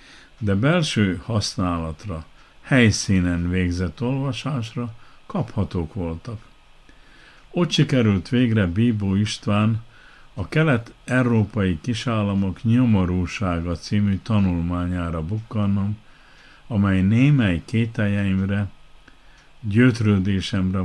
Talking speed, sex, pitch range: 70 wpm, male, 90-115 Hz